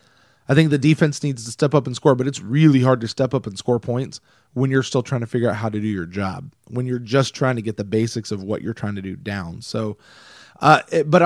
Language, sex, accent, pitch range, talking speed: English, male, American, 115-145 Hz, 270 wpm